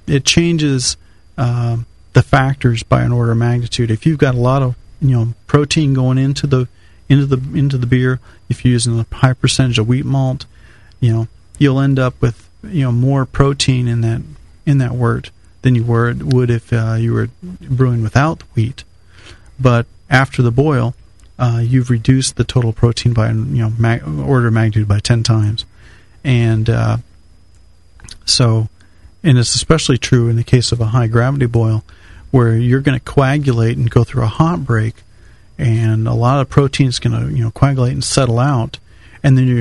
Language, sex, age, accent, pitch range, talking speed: English, male, 40-59, American, 110-130 Hz, 190 wpm